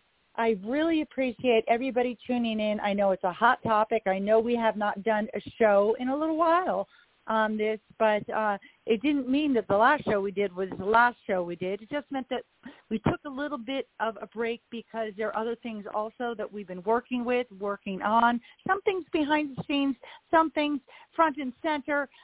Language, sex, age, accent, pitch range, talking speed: English, female, 40-59, American, 190-255 Hz, 210 wpm